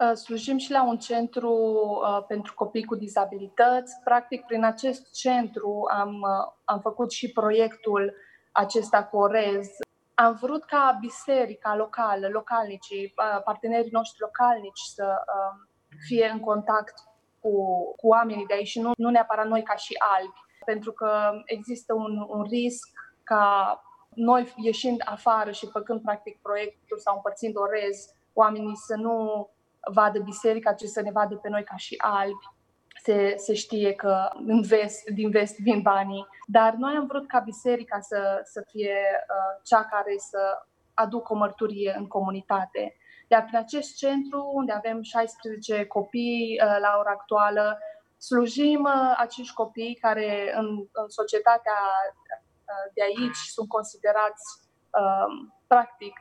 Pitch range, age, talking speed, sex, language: 205-235 Hz, 20-39, 140 wpm, female, Romanian